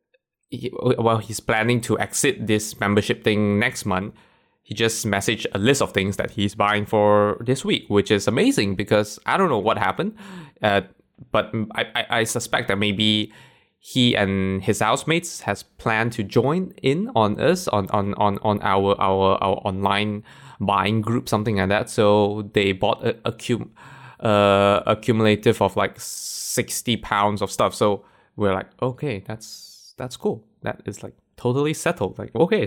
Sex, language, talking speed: male, English, 170 wpm